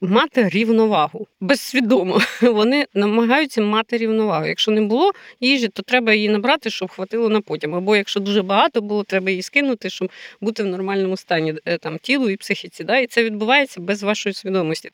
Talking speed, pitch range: 175 wpm, 185-230 Hz